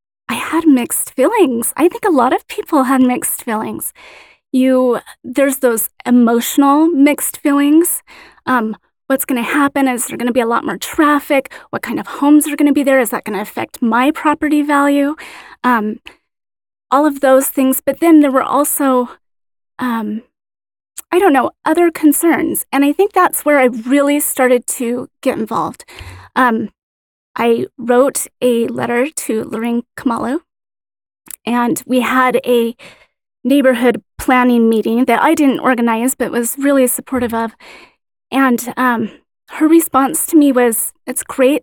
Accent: American